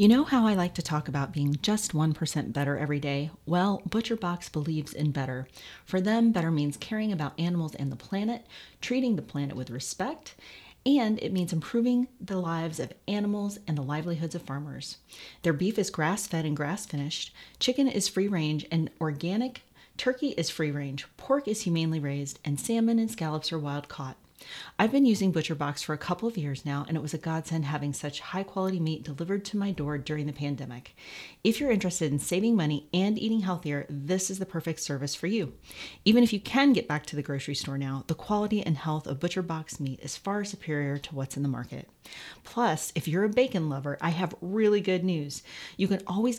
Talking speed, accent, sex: 200 wpm, American, female